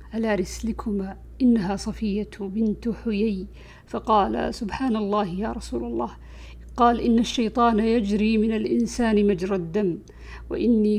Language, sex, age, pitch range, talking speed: Arabic, female, 50-69, 205-235 Hz, 115 wpm